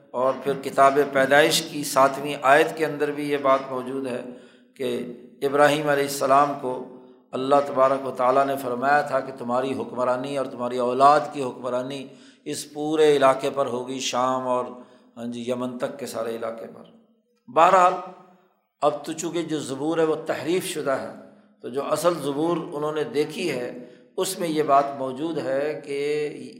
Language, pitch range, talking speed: Urdu, 130-180 Hz, 170 wpm